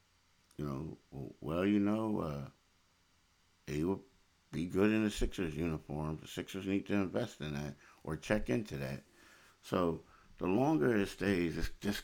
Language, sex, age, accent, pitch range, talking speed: English, male, 60-79, American, 75-95 Hz, 160 wpm